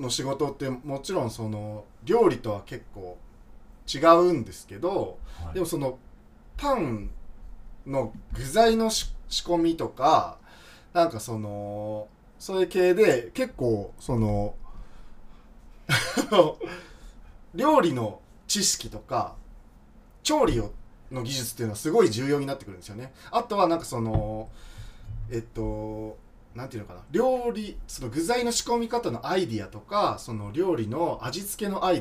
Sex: male